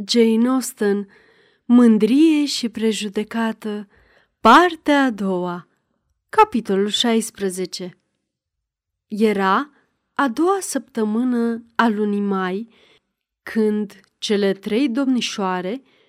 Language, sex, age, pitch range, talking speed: Romanian, female, 30-49, 200-250 Hz, 80 wpm